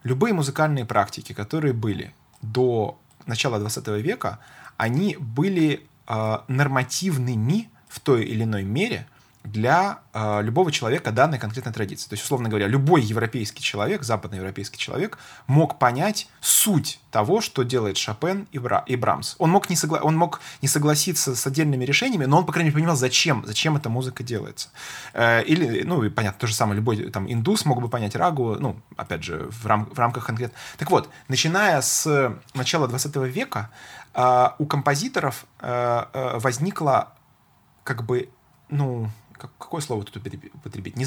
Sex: male